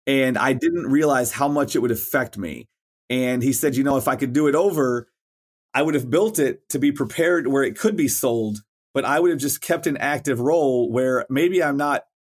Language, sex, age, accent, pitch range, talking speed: English, male, 30-49, American, 125-150 Hz, 230 wpm